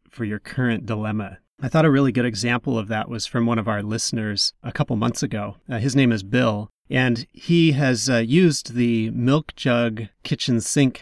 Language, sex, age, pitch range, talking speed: English, male, 30-49, 110-135 Hz, 200 wpm